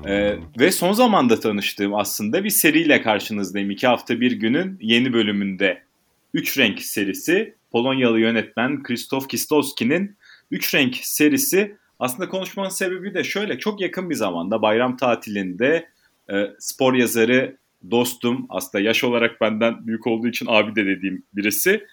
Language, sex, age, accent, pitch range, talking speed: Turkish, male, 30-49, native, 115-170 Hz, 140 wpm